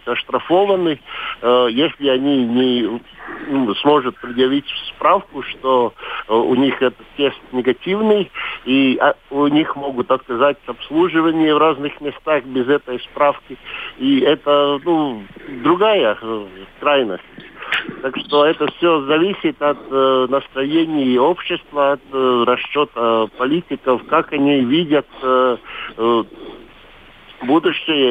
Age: 50-69